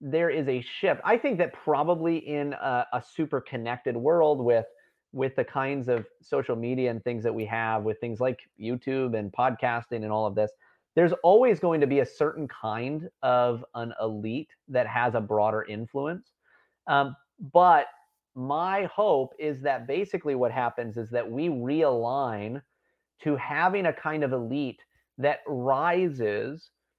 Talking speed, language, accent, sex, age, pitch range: 160 wpm, English, American, male, 30-49, 115-145 Hz